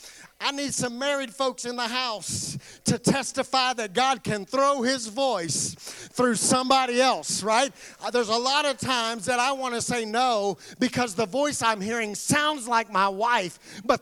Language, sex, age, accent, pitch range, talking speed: English, male, 40-59, American, 200-255 Hz, 175 wpm